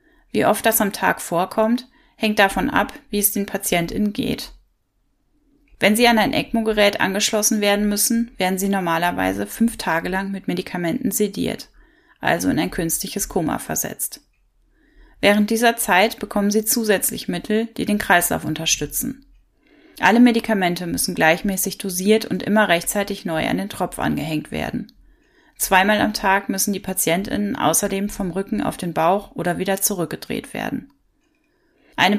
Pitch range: 185-225 Hz